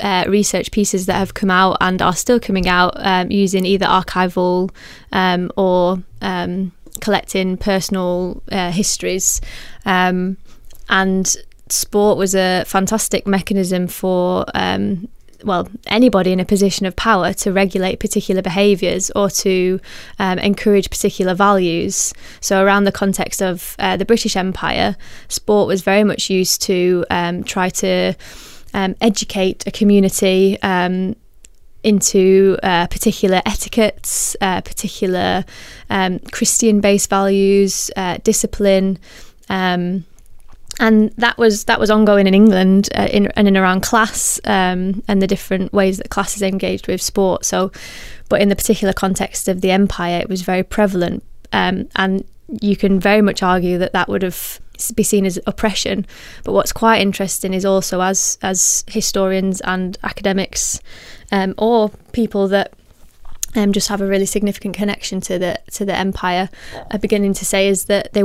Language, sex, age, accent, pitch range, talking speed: English, female, 20-39, British, 185-205 Hz, 150 wpm